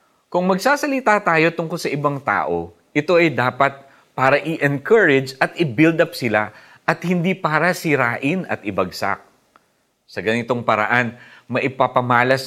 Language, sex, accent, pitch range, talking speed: Filipino, male, native, 95-145 Hz, 125 wpm